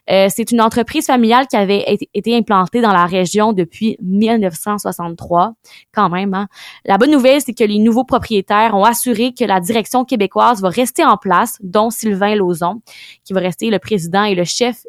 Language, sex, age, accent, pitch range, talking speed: French, female, 20-39, Canadian, 195-235 Hz, 185 wpm